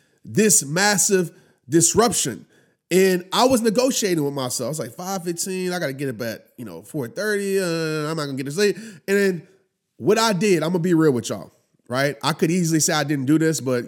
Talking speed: 225 wpm